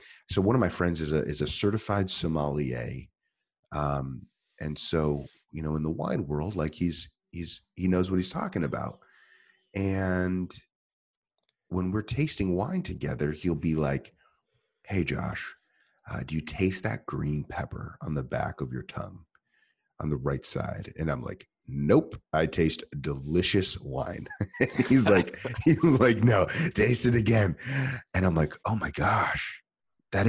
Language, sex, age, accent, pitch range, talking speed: English, male, 30-49, American, 75-100 Hz, 155 wpm